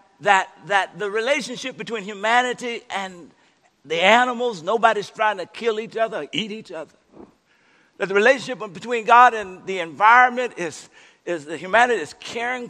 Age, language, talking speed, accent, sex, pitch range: 60-79, English, 155 wpm, American, male, 200-260 Hz